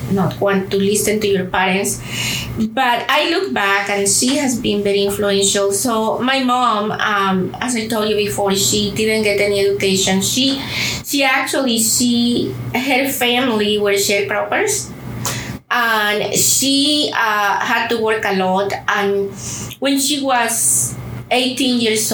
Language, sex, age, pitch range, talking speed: English, female, 20-39, 195-240 Hz, 145 wpm